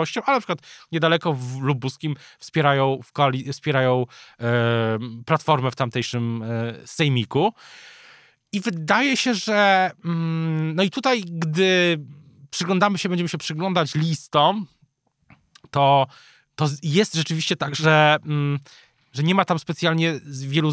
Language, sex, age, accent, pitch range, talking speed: Polish, male, 20-39, native, 130-170 Hz, 125 wpm